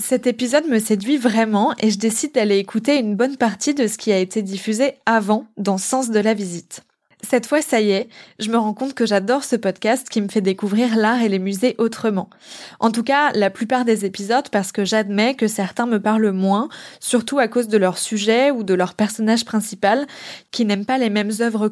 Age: 20-39